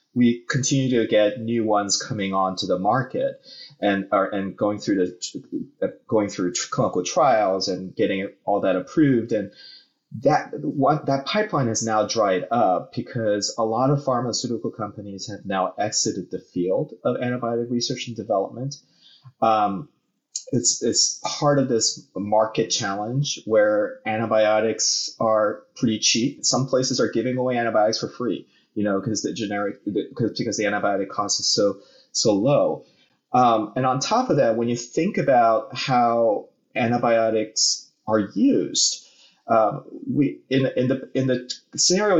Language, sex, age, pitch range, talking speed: English, male, 30-49, 110-135 Hz, 155 wpm